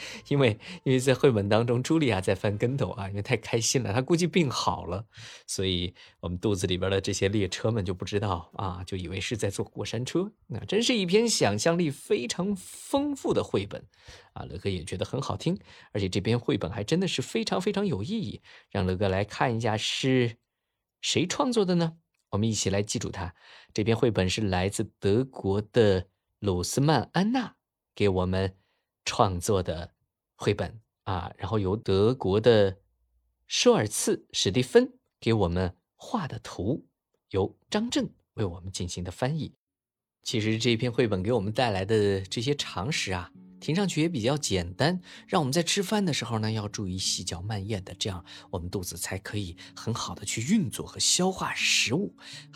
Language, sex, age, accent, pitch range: Chinese, male, 20-39, native, 95-150 Hz